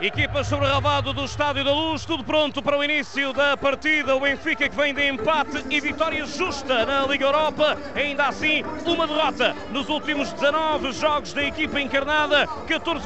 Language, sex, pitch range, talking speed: Portuguese, male, 235-300 Hz, 175 wpm